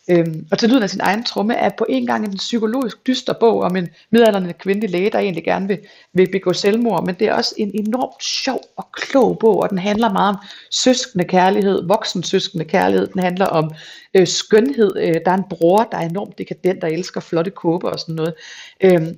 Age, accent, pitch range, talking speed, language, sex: 30-49, native, 170-210 Hz, 220 wpm, Danish, female